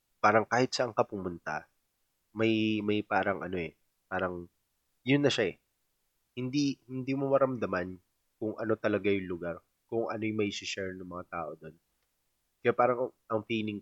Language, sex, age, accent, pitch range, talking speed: Filipino, male, 20-39, native, 90-120 Hz, 160 wpm